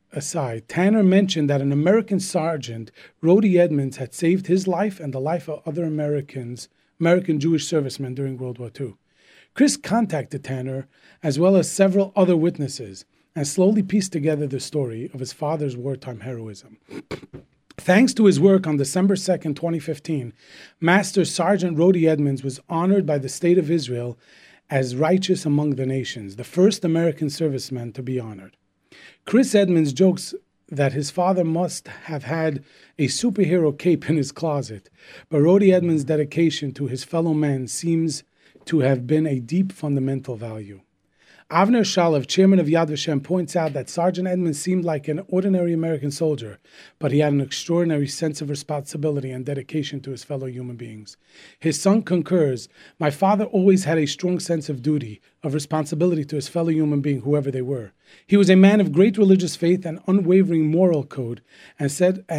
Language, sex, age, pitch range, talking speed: English, male, 40-59, 140-180 Hz, 170 wpm